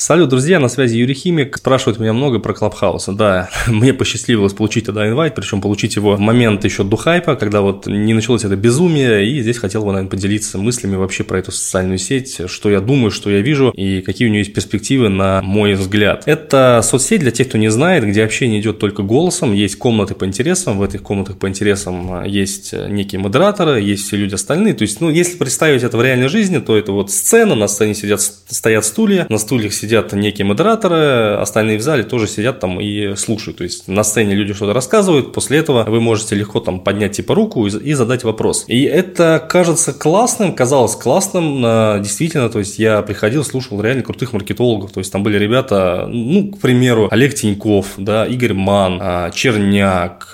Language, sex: Russian, male